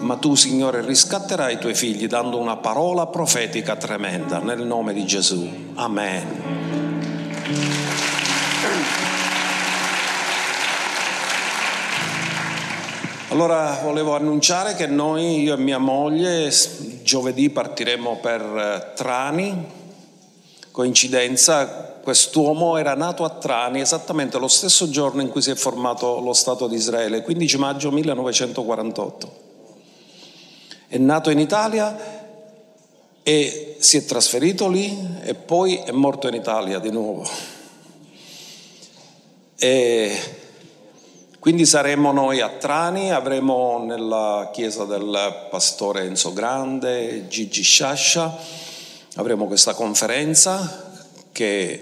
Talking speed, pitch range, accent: 100 wpm, 120-165 Hz, native